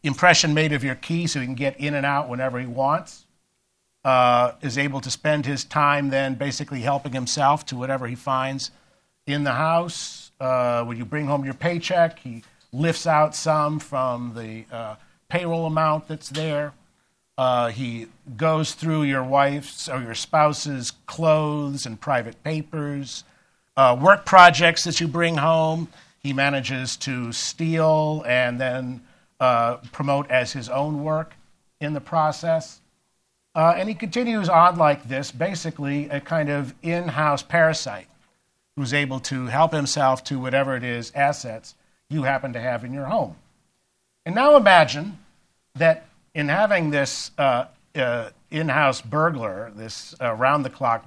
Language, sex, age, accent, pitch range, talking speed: English, male, 50-69, American, 130-165 Hz, 155 wpm